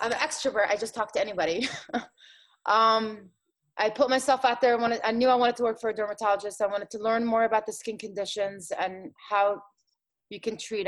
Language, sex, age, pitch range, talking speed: English, female, 20-39, 200-245 Hz, 215 wpm